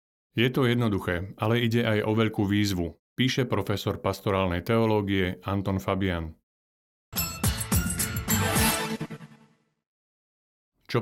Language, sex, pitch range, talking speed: Slovak, male, 95-115 Hz, 85 wpm